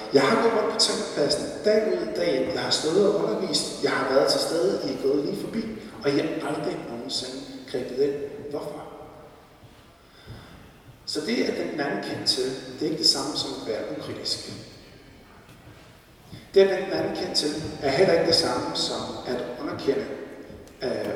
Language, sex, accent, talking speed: Danish, male, native, 180 wpm